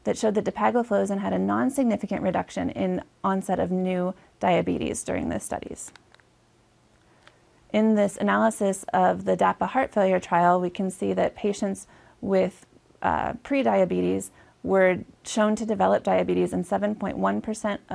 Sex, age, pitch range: female, 30-49, 180-220 Hz